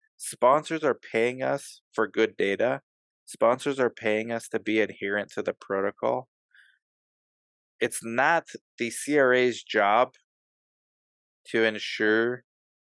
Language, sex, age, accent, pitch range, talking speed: English, male, 20-39, American, 105-125 Hz, 110 wpm